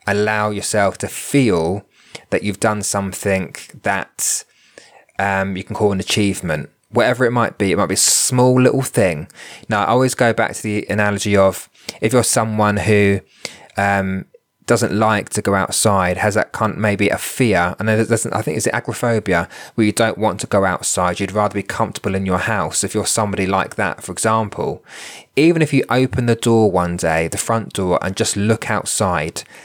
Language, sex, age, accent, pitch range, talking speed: English, male, 20-39, British, 95-110 Hz, 190 wpm